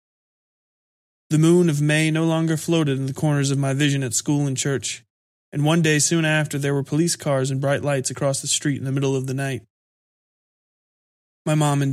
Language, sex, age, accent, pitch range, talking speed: English, male, 20-39, American, 135-150 Hz, 205 wpm